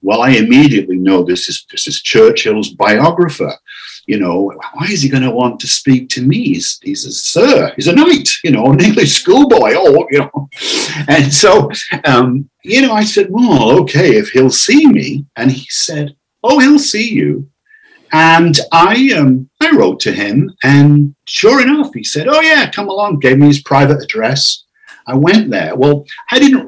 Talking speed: 190 wpm